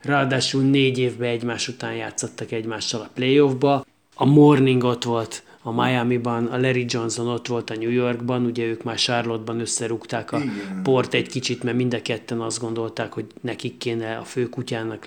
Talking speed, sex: 175 wpm, male